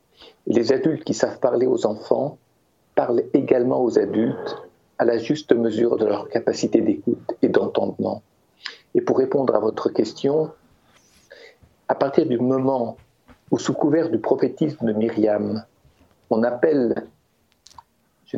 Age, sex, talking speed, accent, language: 50-69, male, 135 wpm, French, French